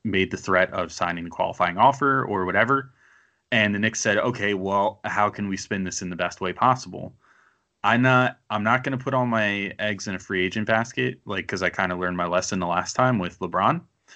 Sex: male